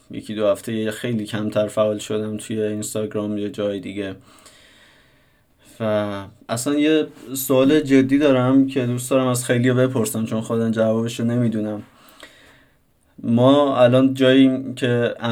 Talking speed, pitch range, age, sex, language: 135 wpm, 110-130 Hz, 20-39, male, Persian